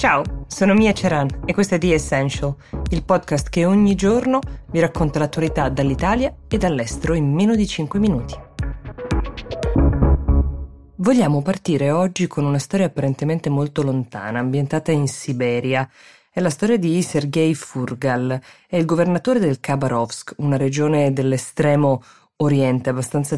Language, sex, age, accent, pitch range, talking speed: Italian, female, 20-39, native, 135-170 Hz, 135 wpm